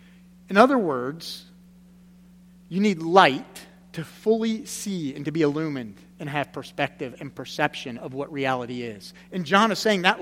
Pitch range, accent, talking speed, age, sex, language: 160-190 Hz, American, 160 wpm, 40-59, male, English